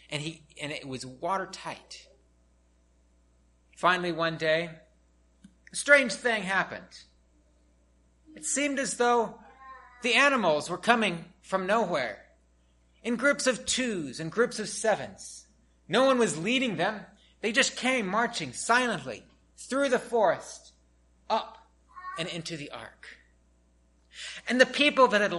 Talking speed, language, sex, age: 130 wpm, English, male, 30-49